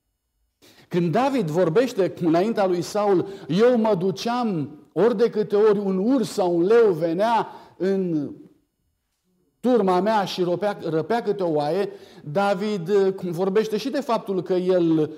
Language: Romanian